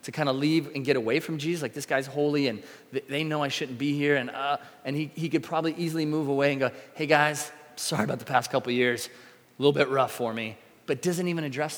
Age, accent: 30-49, American